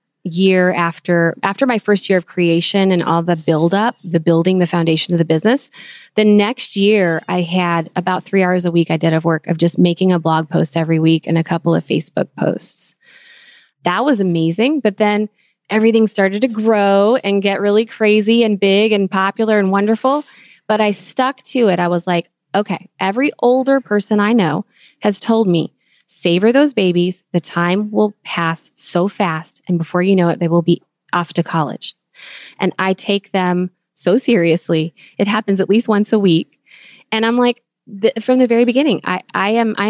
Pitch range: 175-215 Hz